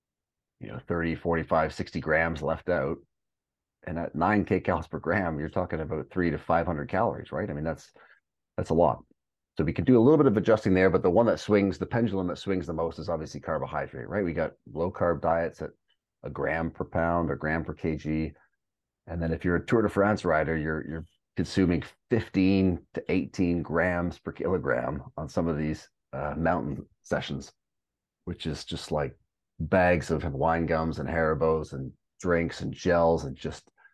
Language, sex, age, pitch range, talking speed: English, male, 40-59, 80-95 Hz, 190 wpm